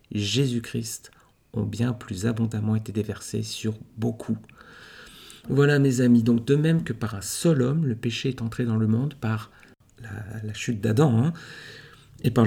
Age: 40-59